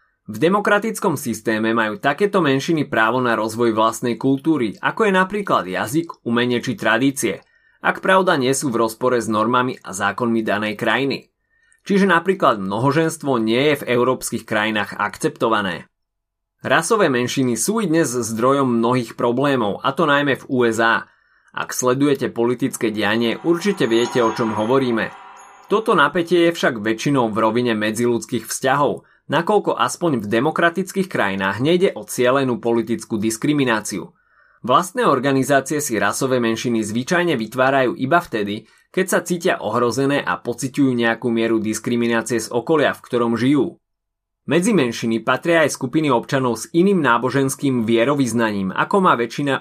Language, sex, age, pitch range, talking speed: Slovak, male, 20-39, 115-160 Hz, 140 wpm